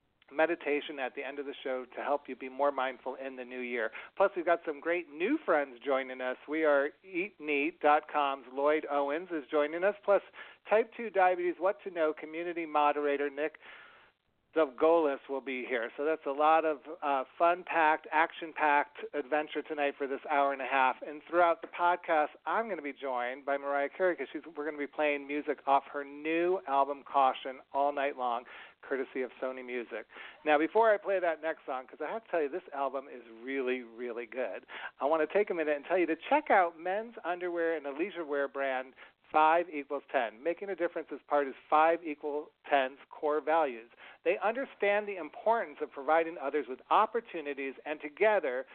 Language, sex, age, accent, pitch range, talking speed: English, male, 40-59, American, 140-175 Hz, 200 wpm